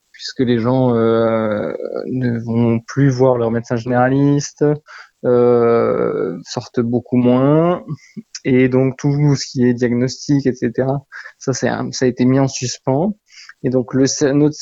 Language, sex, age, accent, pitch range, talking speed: French, male, 20-39, French, 120-140 Hz, 135 wpm